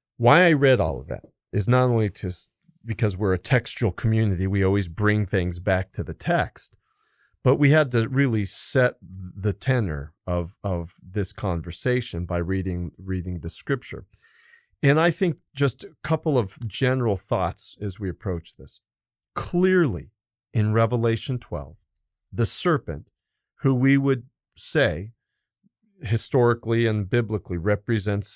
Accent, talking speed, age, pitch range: American, 140 wpm, 40-59, 95-125 Hz